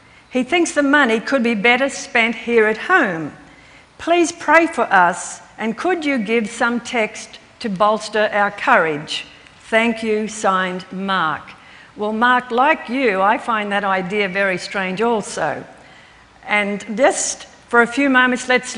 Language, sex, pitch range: English, female, 215-265 Hz